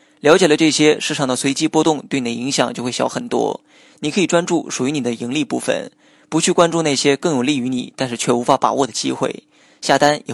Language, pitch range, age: Chinese, 135-170 Hz, 20-39